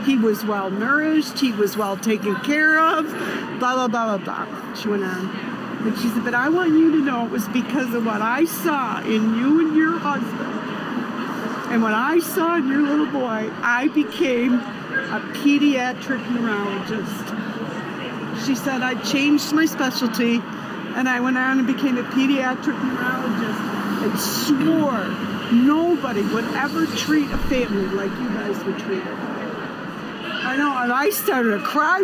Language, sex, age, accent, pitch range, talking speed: English, female, 50-69, American, 225-290 Hz, 165 wpm